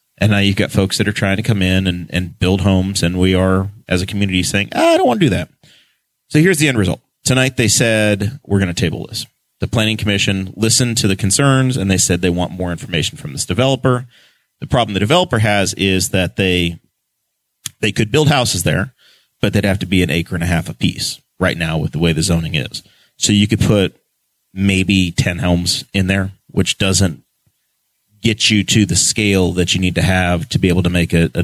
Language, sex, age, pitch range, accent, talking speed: English, male, 30-49, 95-115 Hz, American, 230 wpm